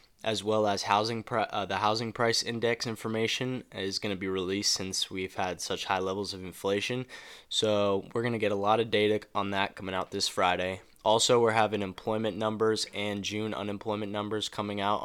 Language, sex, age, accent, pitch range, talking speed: English, male, 20-39, American, 95-110 Hz, 195 wpm